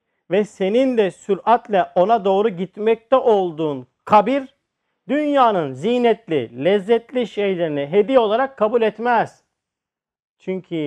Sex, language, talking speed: male, Turkish, 100 wpm